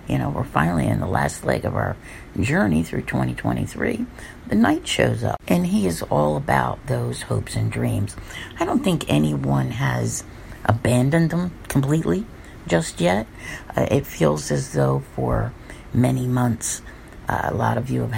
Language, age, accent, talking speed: English, 50-69, American, 165 wpm